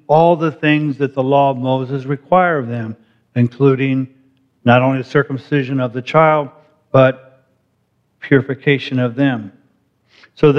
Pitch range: 140-170 Hz